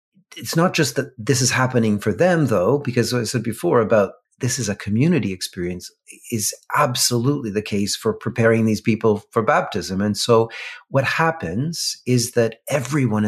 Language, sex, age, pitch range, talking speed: English, male, 40-59, 105-125 Hz, 170 wpm